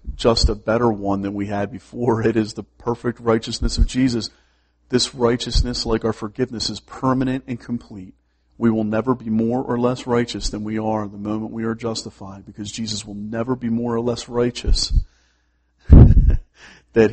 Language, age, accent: English, 40-59, American